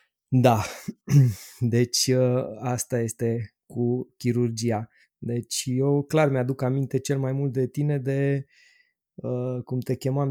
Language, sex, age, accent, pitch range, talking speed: Romanian, male, 20-39, native, 115-140 Hz, 130 wpm